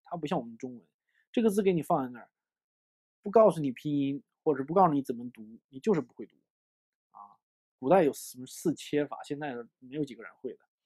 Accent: native